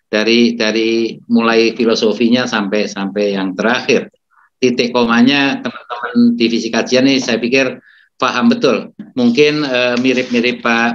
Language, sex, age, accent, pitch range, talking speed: Indonesian, male, 50-69, native, 115-145 Hz, 125 wpm